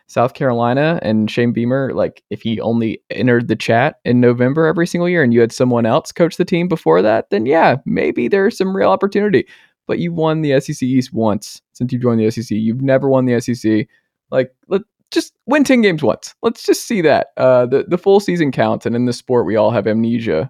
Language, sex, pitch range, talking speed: English, male, 110-150 Hz, 225 wpm